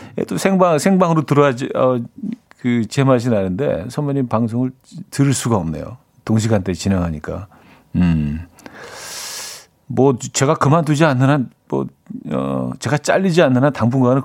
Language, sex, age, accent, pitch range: Korean, male, 40-59, native, 115-155 Hz